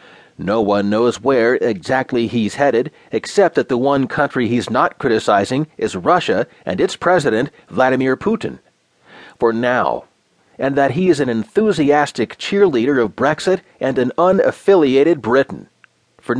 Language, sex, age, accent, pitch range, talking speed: English, male, 40-59, American, 120-155 Hz, 140 wpm